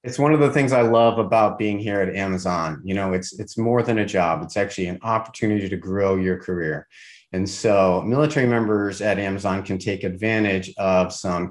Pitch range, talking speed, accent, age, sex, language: 95-120 Hz, 205 wpm, American, 40-59, male, English